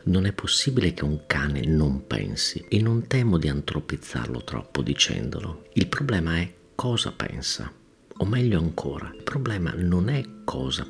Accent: native